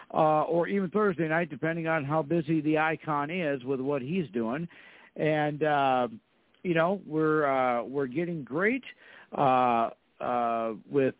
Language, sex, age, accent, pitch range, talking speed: English, male, 50-69, American, 130-175 Hz, 150 wpm